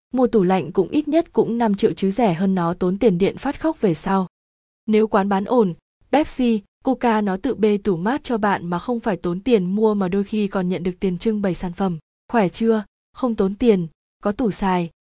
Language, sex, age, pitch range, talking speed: Vietnamese, female, 20-39, 185-230 Hz, 230 wpm